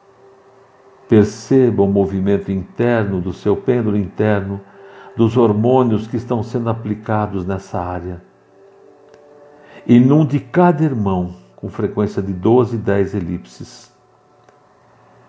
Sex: male